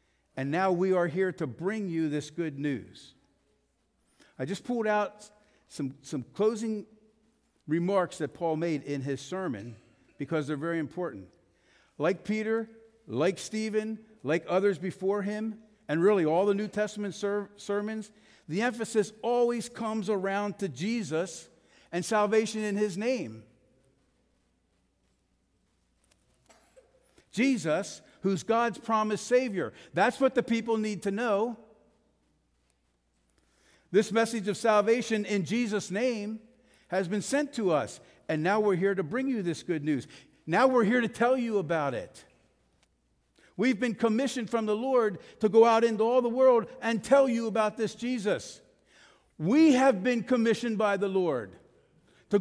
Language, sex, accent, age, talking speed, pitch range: English, male, American, 50-69, 145 wpm, 175-230 Hz